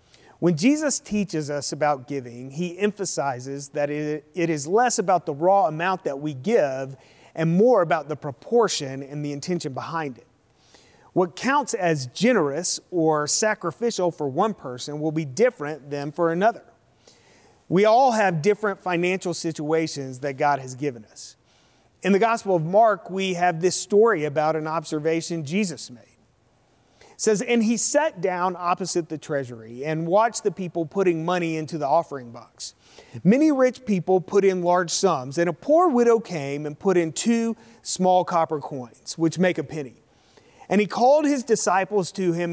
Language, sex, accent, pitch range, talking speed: English, male, American, 145-195 Hz, 165 wpm